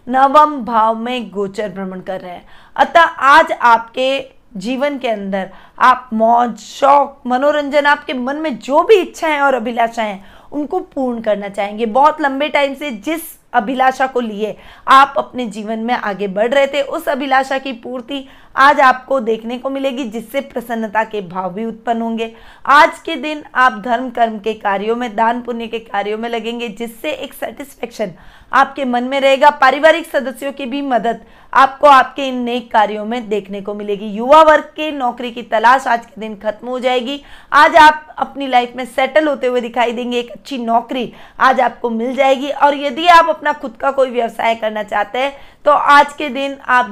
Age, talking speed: 20-39, 185 wpm